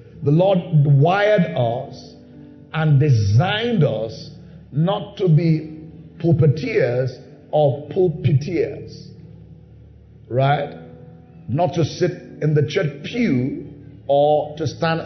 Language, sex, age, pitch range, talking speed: English, male, 50-69, 135-165 Hz, 95 wpm